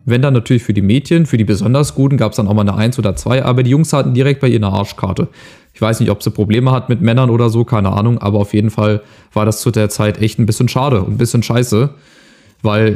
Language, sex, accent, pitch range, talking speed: German, male, German, 110-135 Hz, 275 wpm